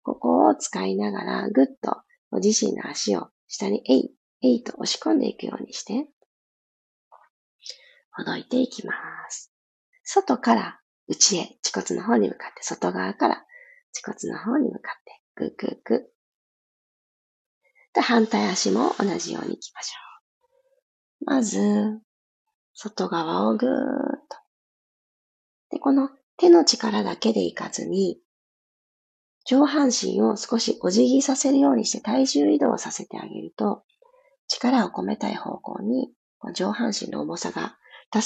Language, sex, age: Japanese, female, 40-59